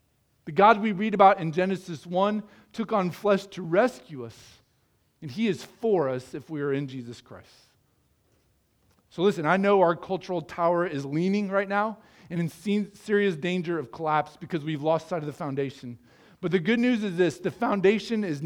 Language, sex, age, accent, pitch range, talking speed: English, male, 40-59, American, 130-180 Hz, 190 wpm